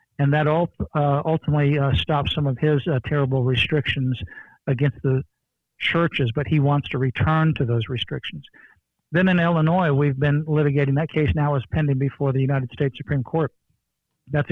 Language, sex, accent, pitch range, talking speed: English, male, American, 135-150 Hz, 170 wpm